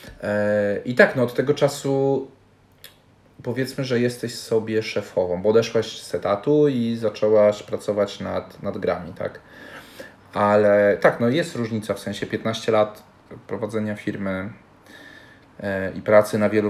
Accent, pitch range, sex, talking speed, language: native, 100-115 Hz, male, 135 wpm, Polish